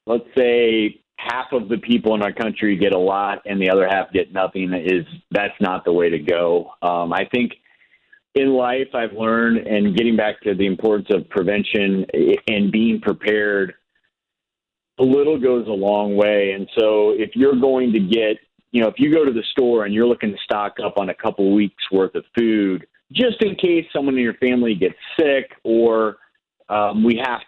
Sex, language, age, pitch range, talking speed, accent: male, English, 40-59, 105-130 Hz, 200 wpm, American